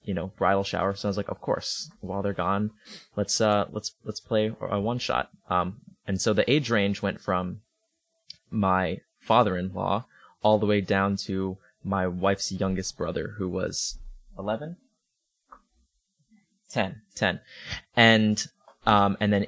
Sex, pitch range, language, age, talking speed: male, 95-110 Hz, English, 20-39, 150 wpm